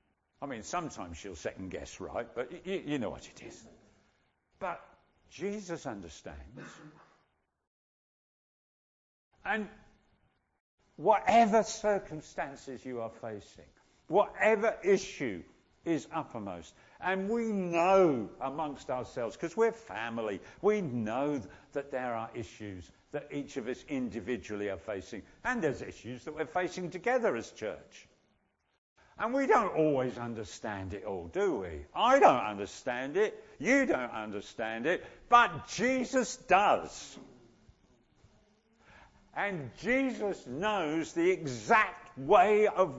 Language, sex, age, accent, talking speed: English, male, 50-69, British, 115 wpm